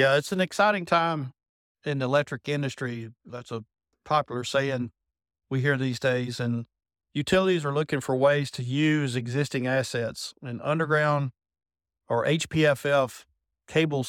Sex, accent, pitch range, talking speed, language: male, American, 115-140 Hz, 135 wpm, English